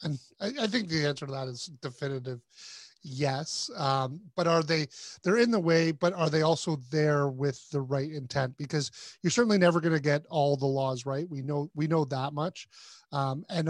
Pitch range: 140-175 Hz